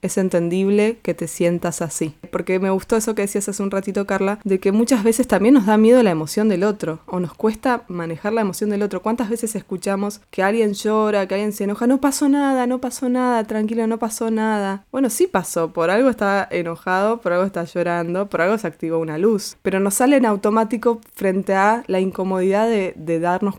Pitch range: 180-230 Hz